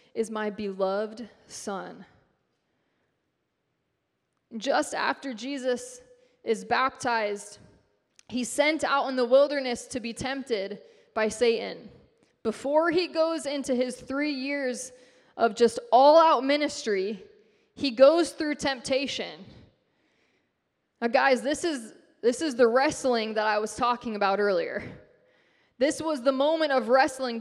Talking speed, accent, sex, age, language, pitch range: 125 wpm, American, female, 20-39, English, 230-290 Hz